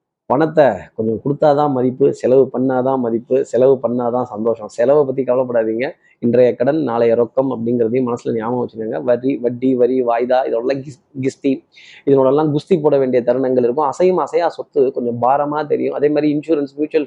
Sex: male